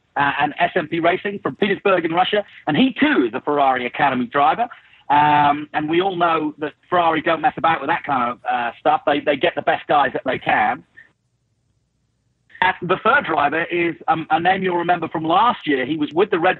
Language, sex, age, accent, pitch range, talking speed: English, male, 40-59, British, 145-200 Hz, 215 wpm